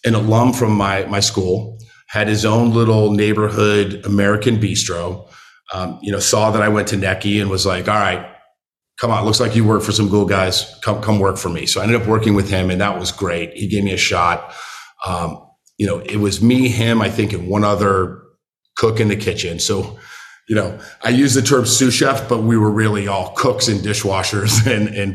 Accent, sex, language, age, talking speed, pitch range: American, male, English, 40-59, 220 wpm, 95-115 Hz